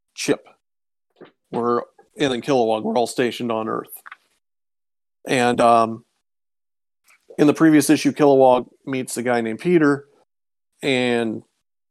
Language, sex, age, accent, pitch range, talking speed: English, male, 40-59, American, 120-135 Hz, 110 wpm